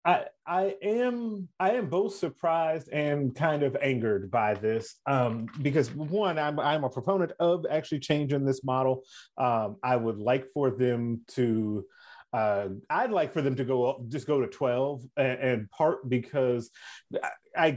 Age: 30-49